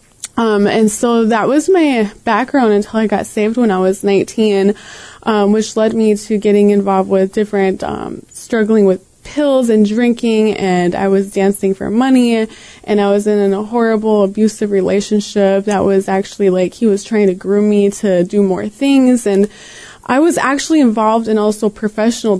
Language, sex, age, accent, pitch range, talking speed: English, female, 20-39, American, 200-235 Hz, 175 wpm